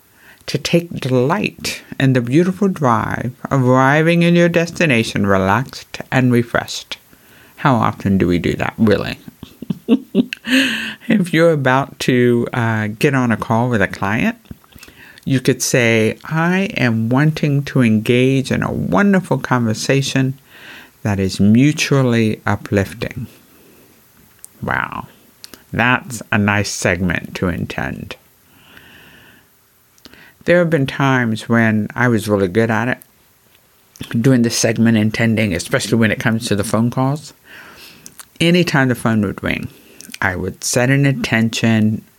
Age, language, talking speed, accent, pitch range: 60-79, English, 130 wpm, American, 110-150 Hz